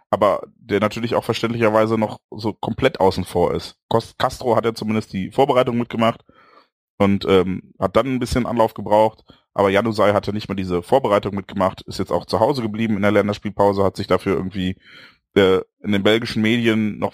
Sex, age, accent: male, 30-49, German